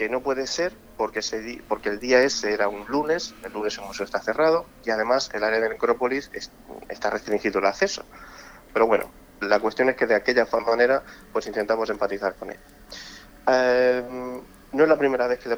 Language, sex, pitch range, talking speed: Spanish, male, 105-130 Hz, 190 wpm